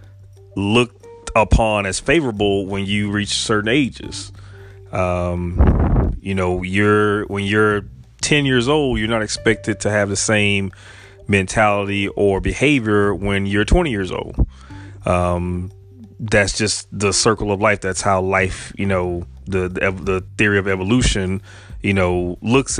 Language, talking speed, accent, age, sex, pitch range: English, 140 wpm, American, 30-49, male, 95-110 Hz